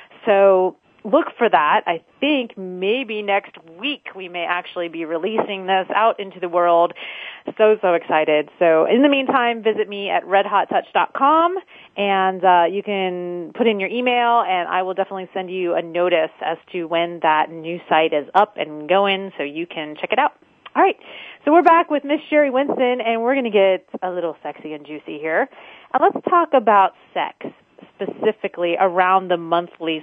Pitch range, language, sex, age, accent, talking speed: 170-210 Hz, English, female, 30-49, American, 180 wpm